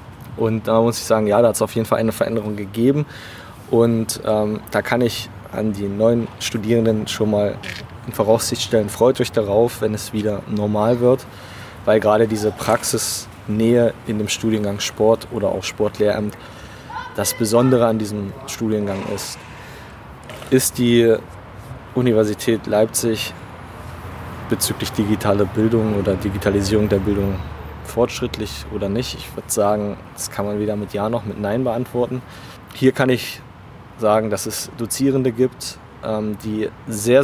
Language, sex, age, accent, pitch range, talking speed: German, male, 20-39, German, 105-120 Hz, 145 wpm